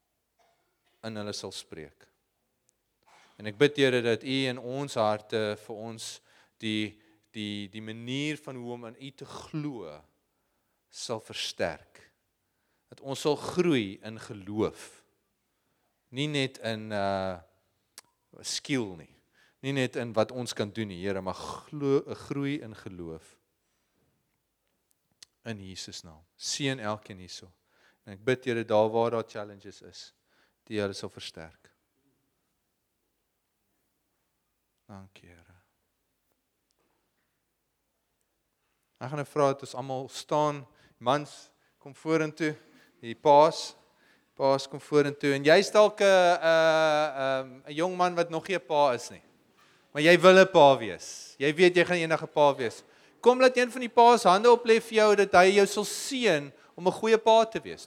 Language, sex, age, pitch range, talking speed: English, male, 40-59, 110-160 Hz, 150 wpm